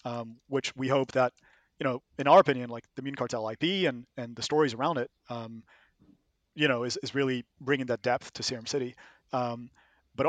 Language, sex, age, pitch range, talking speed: English, male, 30-49, 120-135 Hz, 205 wpm